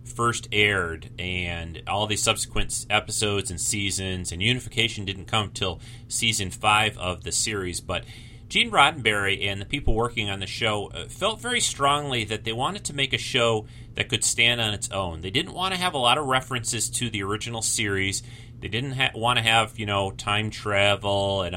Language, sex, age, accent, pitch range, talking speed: English, male, 30-49, American, 95-120 Hz, 190 wpm